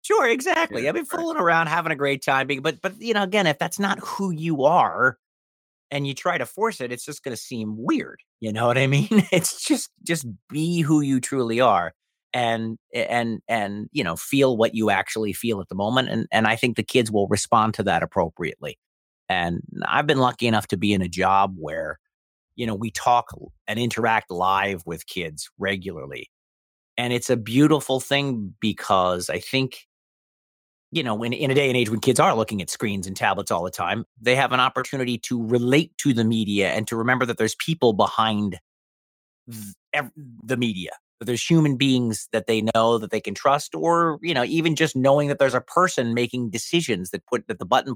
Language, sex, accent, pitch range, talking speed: English, male, American, 110-140 Hz, 210 wpm